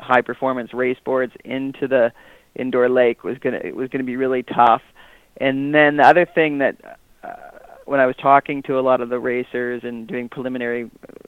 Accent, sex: American, male